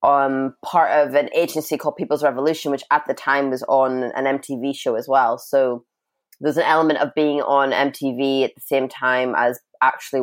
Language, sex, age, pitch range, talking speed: English, female, 20-39, 130-165 Hz, 195 wpm